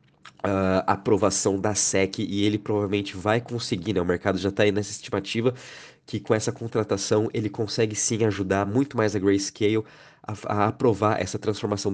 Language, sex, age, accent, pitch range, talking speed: Portuguese, male, 20-39, Brazilian, 100-120 Hz, 170 wpm